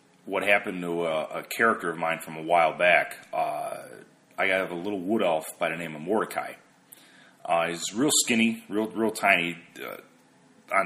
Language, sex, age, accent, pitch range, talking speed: English, male, 30-49, American, 90-120 Hz, 180 wpm